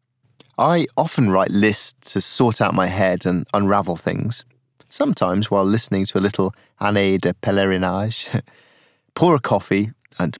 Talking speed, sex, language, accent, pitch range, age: 145 wpm, male, English, British, 105-130 Hz, 30-49